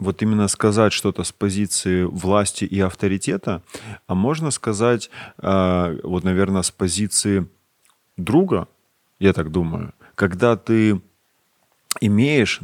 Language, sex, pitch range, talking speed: Russian, male, 95-110 Hz, 110 wpm